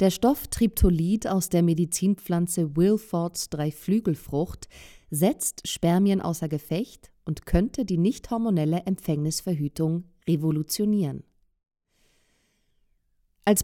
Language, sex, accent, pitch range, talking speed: German, female, German, 160-205 Hz, 85 wpm